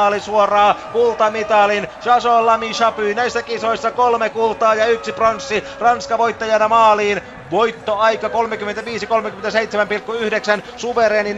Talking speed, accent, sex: 110 wpm, native, male